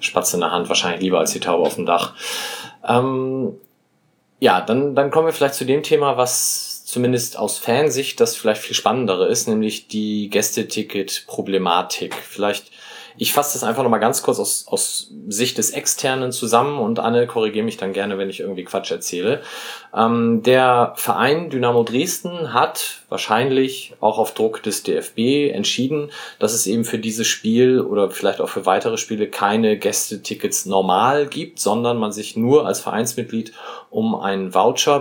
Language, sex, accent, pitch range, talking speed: German, male, German, 95-125 Hz, 170 wpm